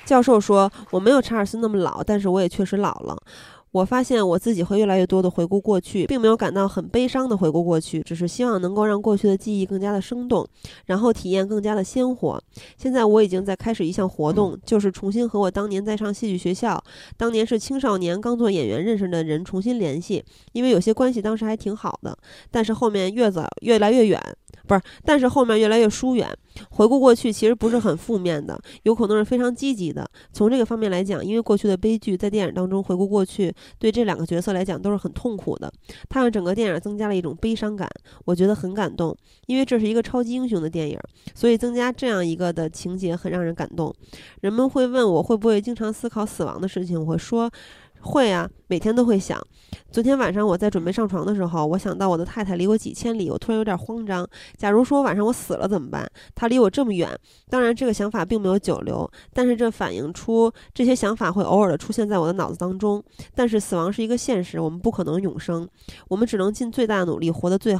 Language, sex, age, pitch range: Chinese, female, 20-39, 185-230 Hz